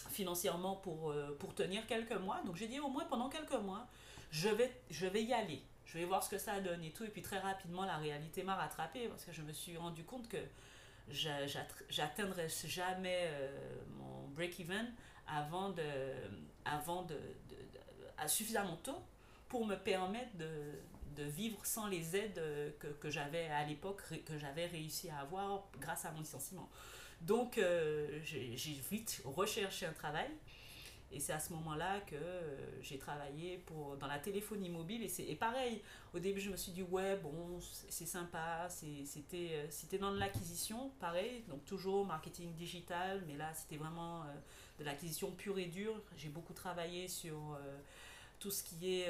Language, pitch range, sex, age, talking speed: French, 150-195 Hz, female, 40-59, 185 wpm